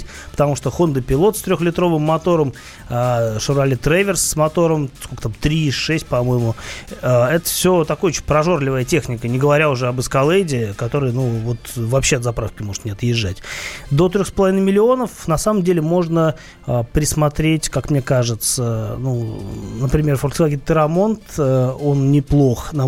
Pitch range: 125-165 Hz